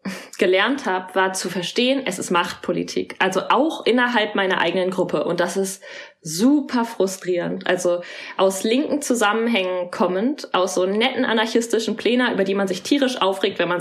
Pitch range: 185-250 Hz